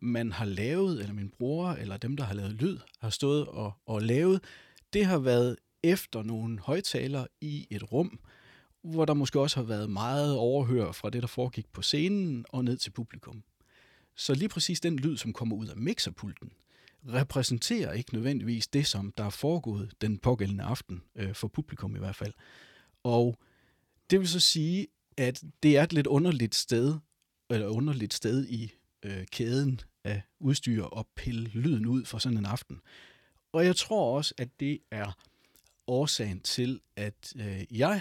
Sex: male